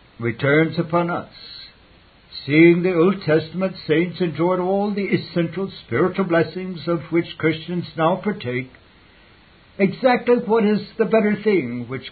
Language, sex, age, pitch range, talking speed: English, male, 60-79, 155-195 Hz, 130 wpm